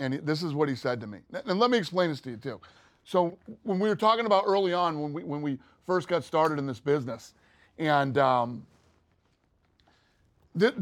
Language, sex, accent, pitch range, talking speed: English, male, American, 120-175 Hz, 205 wpm